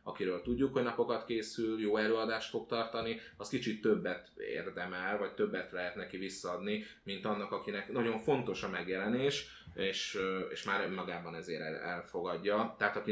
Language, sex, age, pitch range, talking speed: Hungarian, male, 30-49, 95-120 Hz, 150 wpm